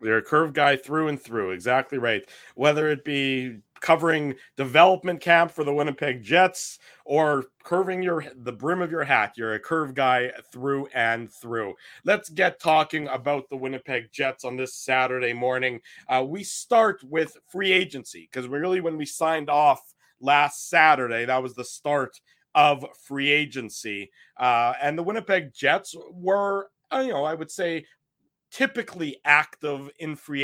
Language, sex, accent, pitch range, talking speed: English, male, American, 125-160 Hz, 160 wpm